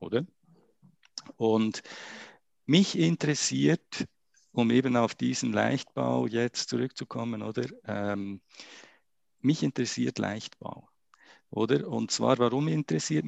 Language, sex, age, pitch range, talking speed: German, male, 50-69, 95-130 Hz, 95 wpm